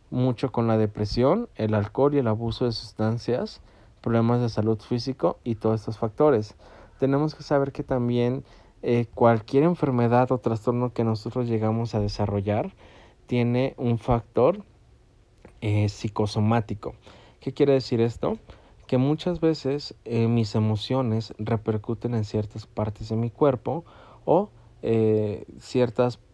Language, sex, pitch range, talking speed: Spanish, male, 110-125 Hz, 135 wpm